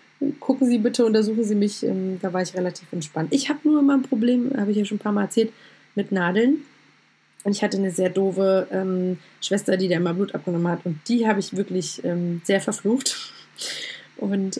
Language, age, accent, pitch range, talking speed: German, 20-39, German, 185-225 Hz, 205 wpm